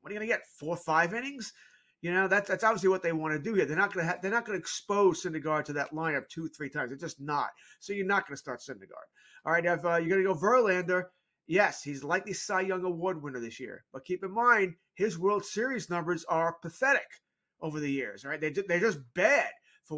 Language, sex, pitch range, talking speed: English, male, 165-210 Hz, 245 wpm